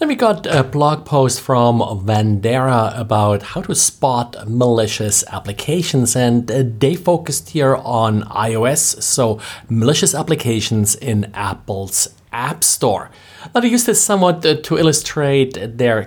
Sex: male